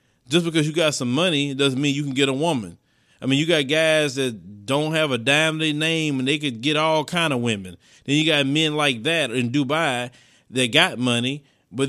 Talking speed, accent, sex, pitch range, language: 230 wpm, American, male, 135-160 Hz, English